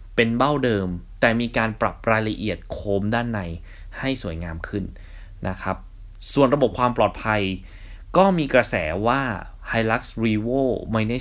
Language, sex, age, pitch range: Thai, male, 20-39, 95-125 Hz